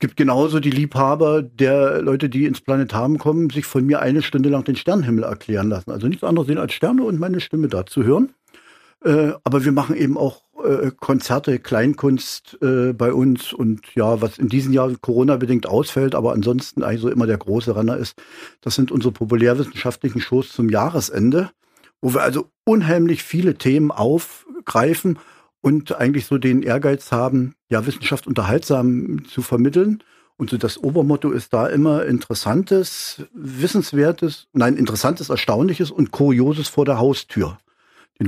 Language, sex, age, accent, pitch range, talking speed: German, male, 50-69, German, 125-155 Hz, 165 wpm